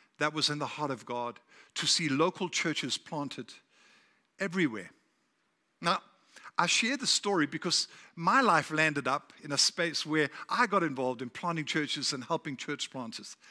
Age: 50-69